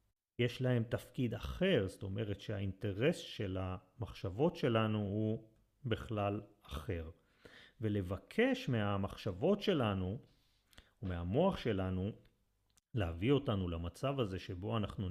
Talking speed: 95 wpm